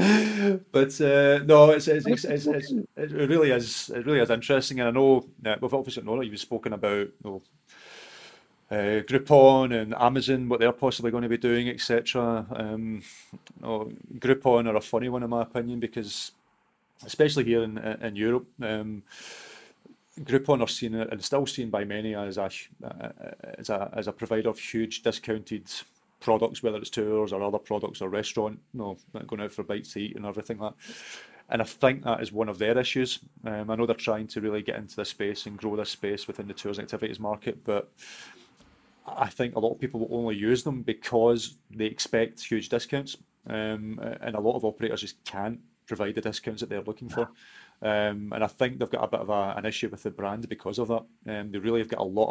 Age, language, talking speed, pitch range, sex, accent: 30-49, English, 200 wpm, 110-125 Hz, male, British